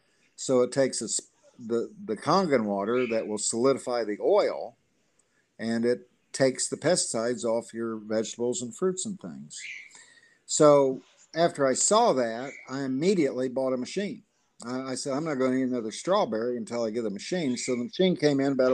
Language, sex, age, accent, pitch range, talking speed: English, male, 50-69, American, 125-160 Hz, 180 wpm